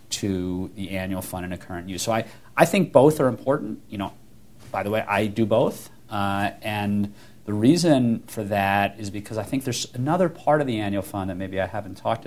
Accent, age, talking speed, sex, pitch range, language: American, 40-59, 220 wpm, male, 100-120 Hz, English